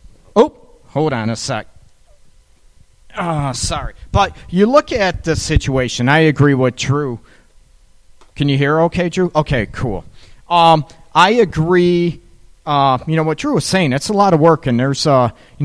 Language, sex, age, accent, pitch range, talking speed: English, male, 40-59, American, 125-160 Hz, 160 wpm